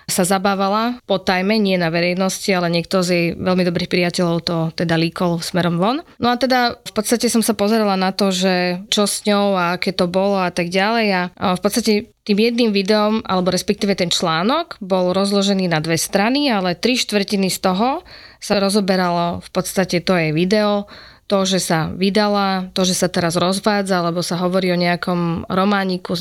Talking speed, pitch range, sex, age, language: 190 wpm, 180-210 Hz, female, 20-39, Slovak